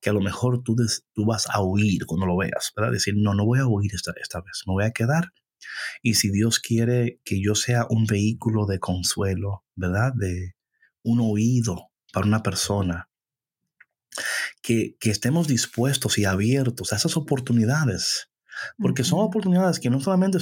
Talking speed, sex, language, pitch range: 175 wpm, male, Spanish, 105-145 Hz